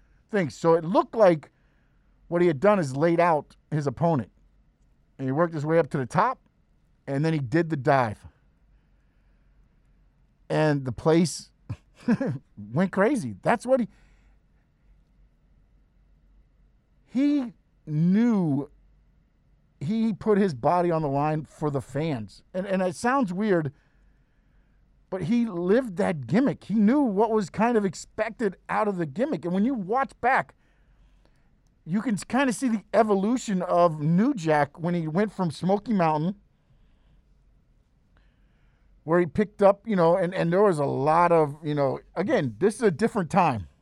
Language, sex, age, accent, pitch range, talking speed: English, male, 50-69, American, 155-210 Hz, 155 wpm